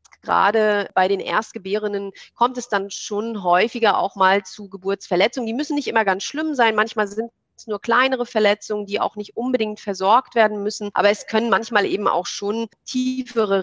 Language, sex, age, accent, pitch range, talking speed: German, female, 30-49, German, 195-230 Hz, 180 wpm